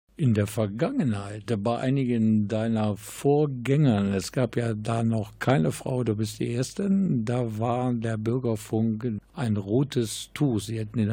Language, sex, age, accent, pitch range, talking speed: German, male, 50-69, German, 105-125 Hz, 150 wpm